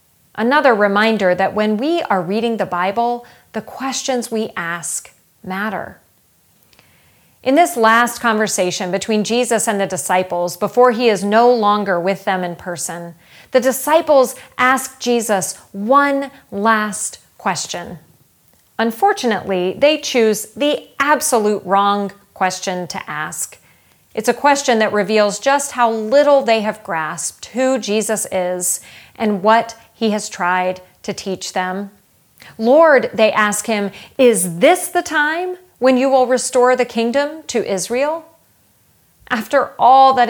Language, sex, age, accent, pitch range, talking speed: English, female, 40-59, American, 195-260 Hz, 135 wpm